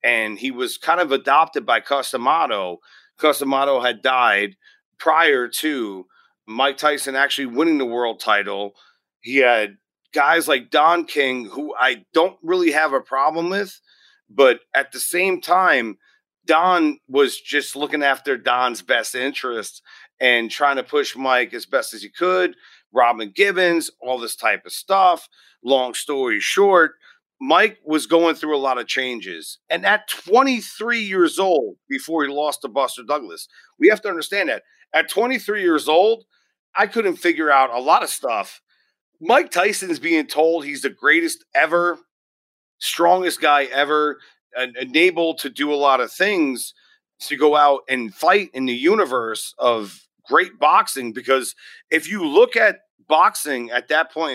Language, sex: English, male